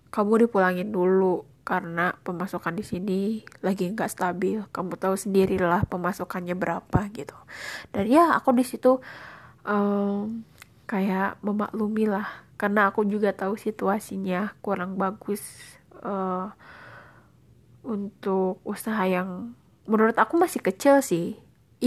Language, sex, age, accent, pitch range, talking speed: Indonesian, female, 20-39, native, 190-225 Hz, 115 wpm